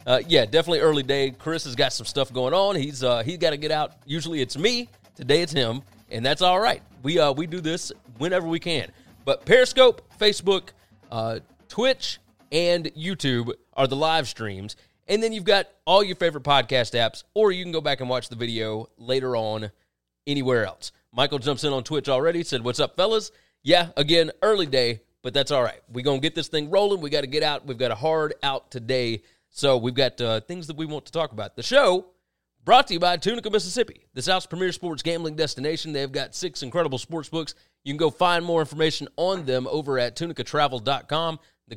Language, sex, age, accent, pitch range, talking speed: English, male, 30-49, American, 130-175 Hz, 210 wpm